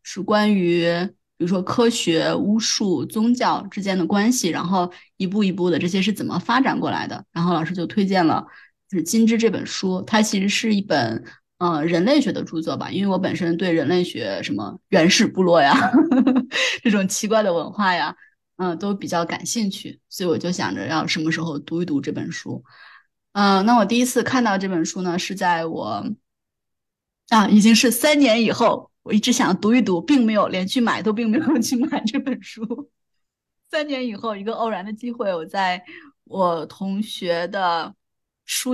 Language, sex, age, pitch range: Chinese, female, 20-39, 180-235 Hz